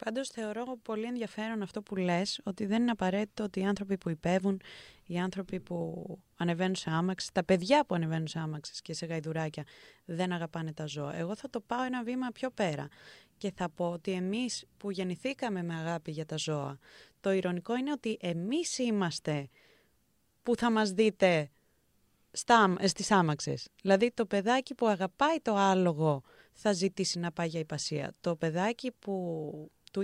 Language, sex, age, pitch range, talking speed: Greek, female, 20-39, 175-255 Hz, 170 wpm